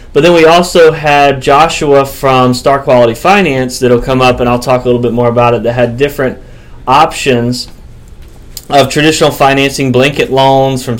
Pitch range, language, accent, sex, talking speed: 125-150 Hz, English, American, male, 175 wpm